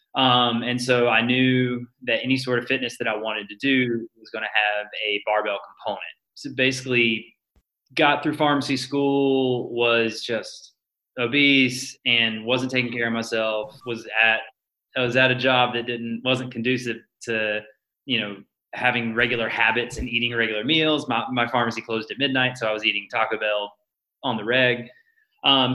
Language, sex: English, male